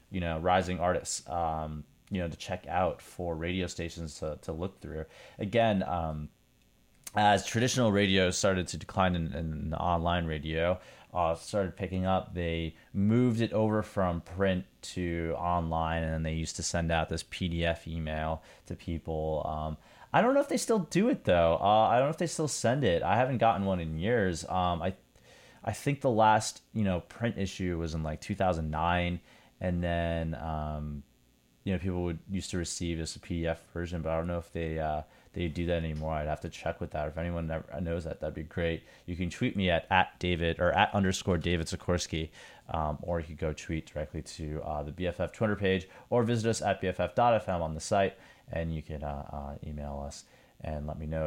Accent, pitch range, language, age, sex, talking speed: American, 80-95 Hz, English, 30-49, male, 205 wpm